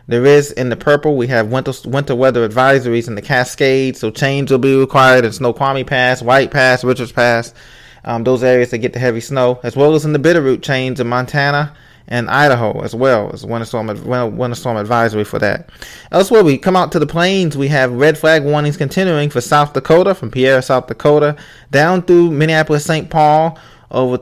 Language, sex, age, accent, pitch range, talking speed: English, male, 20-39, American, 120-145 Hz, 200 wpm